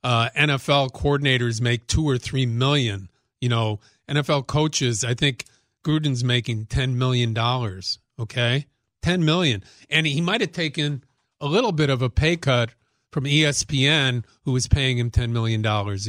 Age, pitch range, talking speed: 40-59, 120-145 Hz, 160 wpm